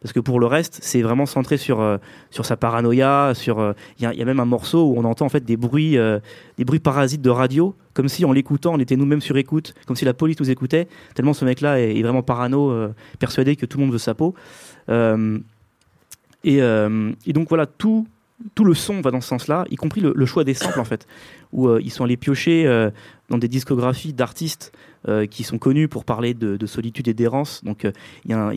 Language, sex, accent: French, male, French